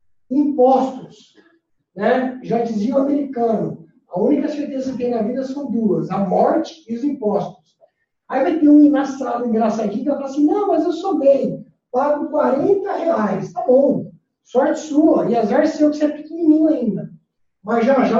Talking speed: 175 wpm